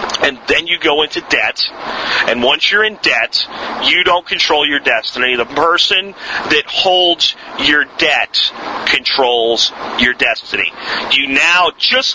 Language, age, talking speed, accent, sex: English, 40-59, 140 wpm, American, male